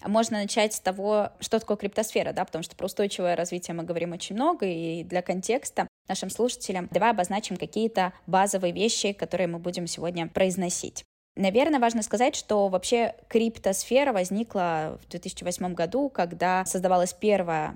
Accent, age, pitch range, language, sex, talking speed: native, 20-39, 185-240 Hz, Russian, female, 150 wpm